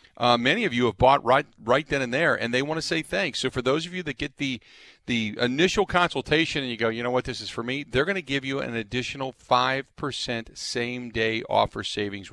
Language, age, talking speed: English, 40-59, 250 wpm